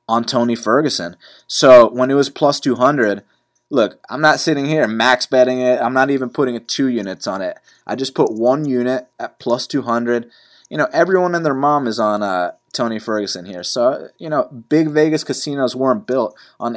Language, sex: English, male